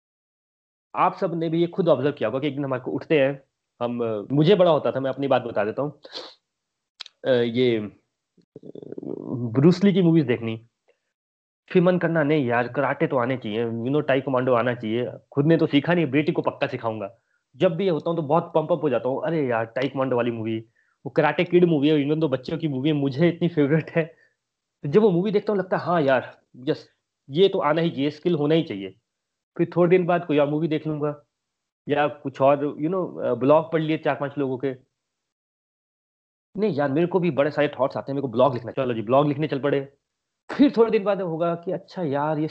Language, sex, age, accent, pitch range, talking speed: Hindi, male, 30-49, native, 130-170 Hz, 210 wpm